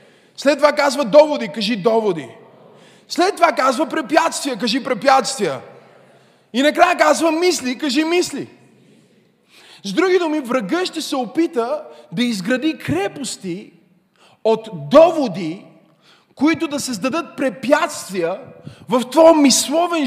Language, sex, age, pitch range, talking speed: Bulgarian, male, 30-49, 230-320 Hz, 110 wpm